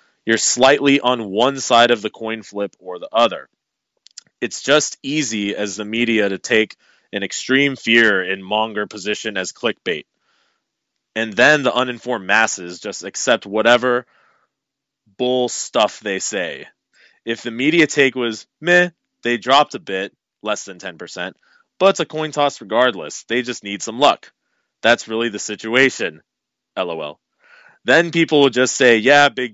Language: English